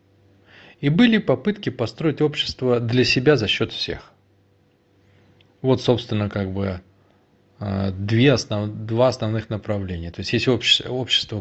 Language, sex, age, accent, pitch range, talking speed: Russian, male, 20-39, native, 100-125 Hz, 125 wpm